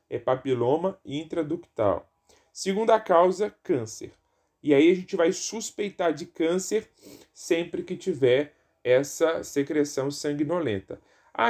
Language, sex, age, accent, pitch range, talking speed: Portuguese, male, 20-39, Brazilian, 135-185 Hz, 110 wpm